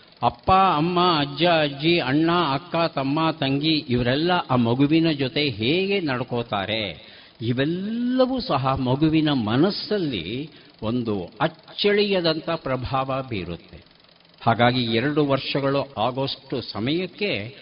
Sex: male